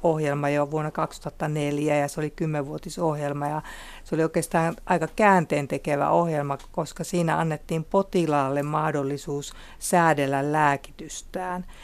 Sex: female